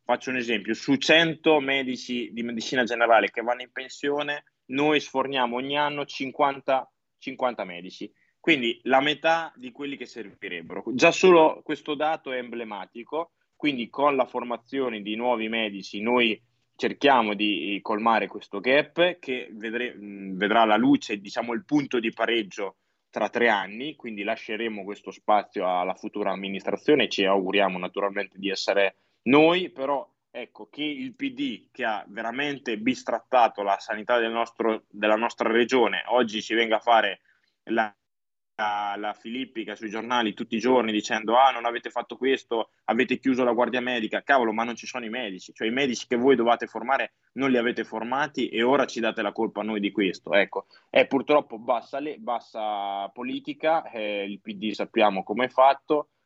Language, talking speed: Italian, 165 wpm